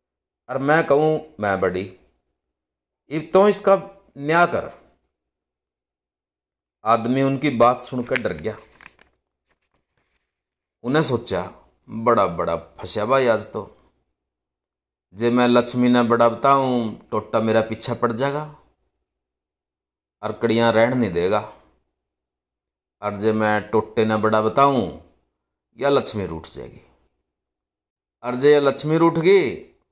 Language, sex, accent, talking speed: Hindi, male, native, 105 wpm